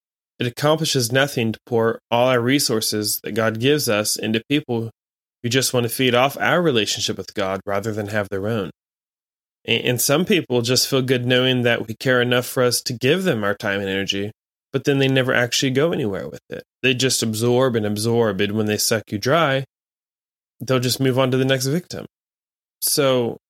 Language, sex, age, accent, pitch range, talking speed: English, male, 20-39, American, 110-135 Hz, 200 wpm